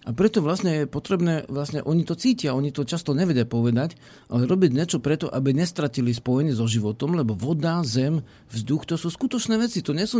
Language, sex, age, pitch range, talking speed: Slovak, male, 50-69, 120-160 Hz, 200 wpm